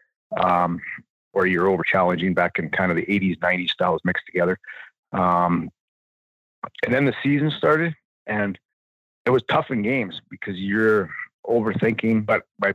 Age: 30-49